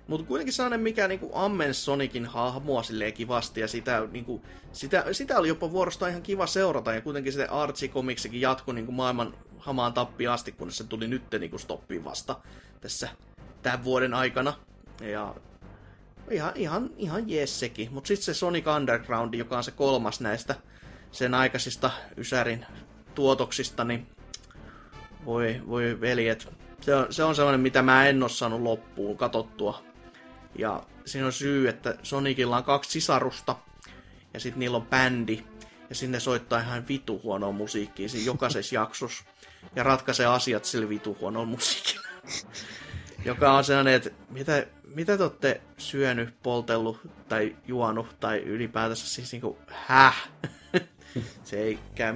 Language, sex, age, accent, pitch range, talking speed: Finnish, male, 20-39, native, 110-135 Hz, 145 wpm